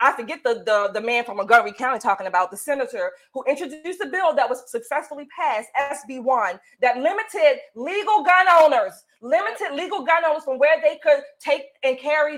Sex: female